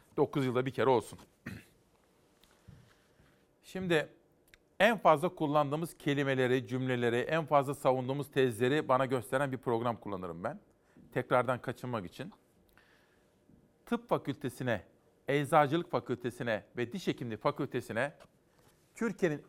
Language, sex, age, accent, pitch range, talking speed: Turkish, male, 50-69, native, 125-160 Hz, 100 wpm